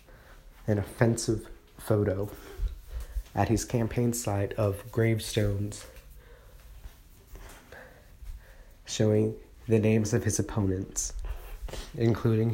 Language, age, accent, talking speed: English, 30-49, American, 75 wpm